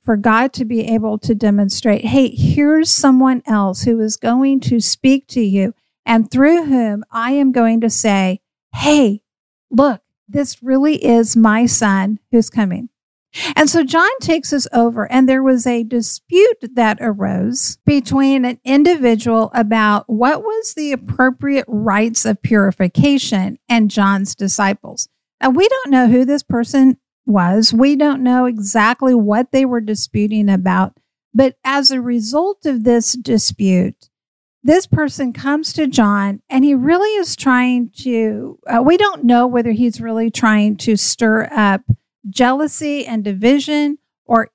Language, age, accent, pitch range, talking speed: English, 50-69, American, 215-270 Hz, 150 wpm